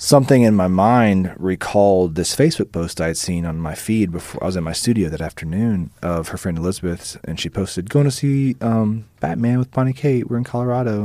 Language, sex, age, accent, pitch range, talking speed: English, male, 30-49, American, 80-100 Hz, 215 wpm